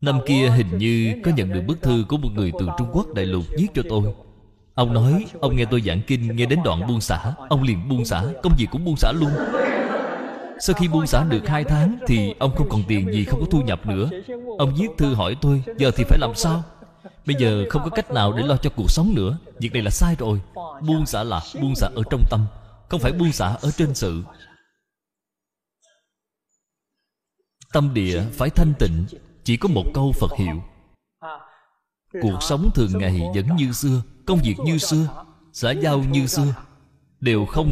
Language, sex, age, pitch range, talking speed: Vietnamese, male, 20-39, 105-150 Hz, 205 wpm